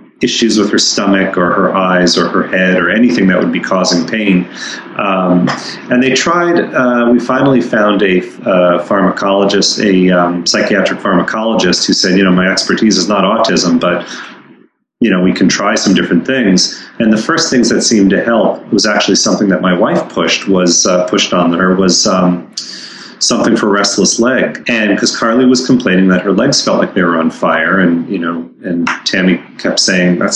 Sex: male